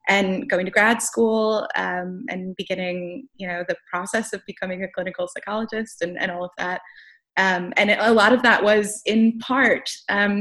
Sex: female